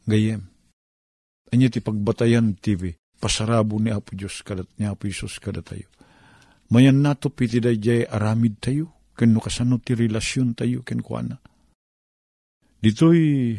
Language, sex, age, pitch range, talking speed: Filipino, male, 50-69, 80-120 Hz, 110 wpm